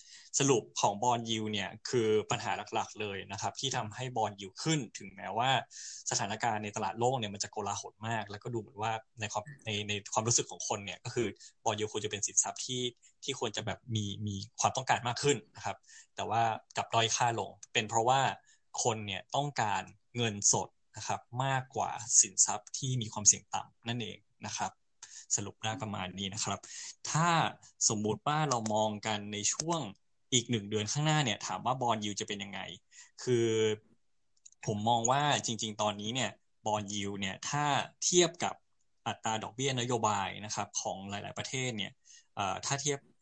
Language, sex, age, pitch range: English, male, 20-39, 105-125 Hz